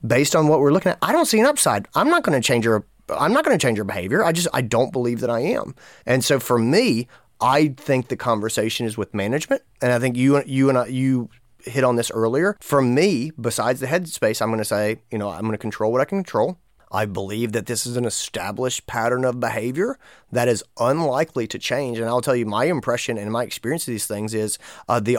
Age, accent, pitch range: 30-49, American, 110-140 Hz